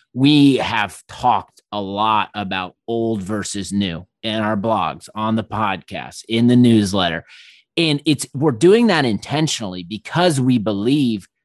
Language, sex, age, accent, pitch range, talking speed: English, male, 30-49, American, 105-125 Hz, 140 wpm